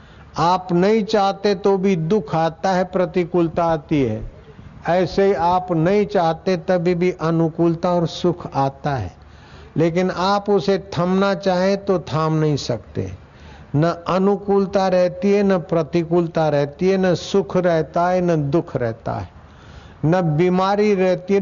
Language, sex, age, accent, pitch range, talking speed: Hindi, male, 60-79, native, 155-185 Hz, 145 wpm